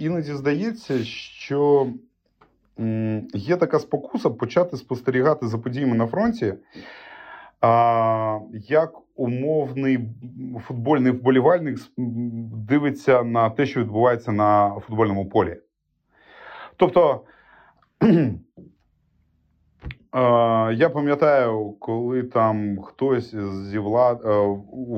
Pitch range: 105-135 Hz